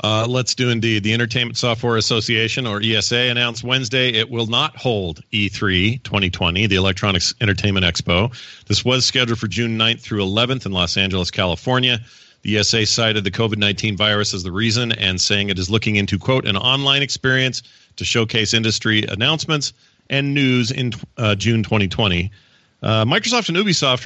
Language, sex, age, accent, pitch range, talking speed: English, male, 40-59, American, 100-125 Hz, 165 wpm